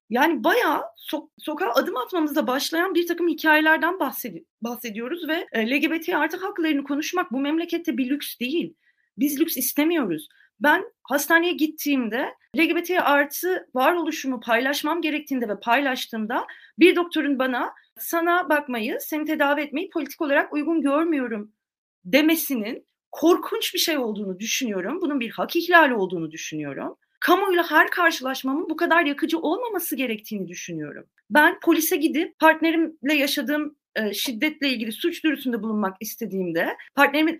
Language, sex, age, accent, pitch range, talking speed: Turkish, female, 30-49, native, 245-320 Hz, 130 wpm